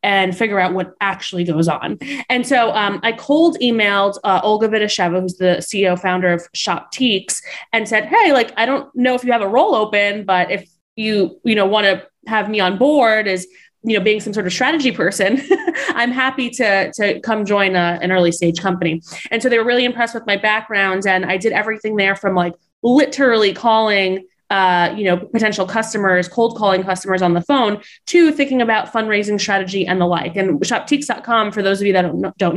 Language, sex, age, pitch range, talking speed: English, female, 20-39, 185-225 Hz, 205 wpm